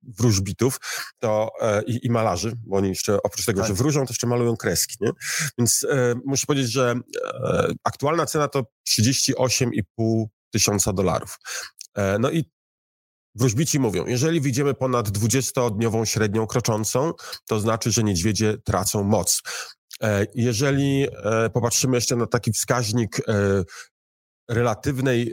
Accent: native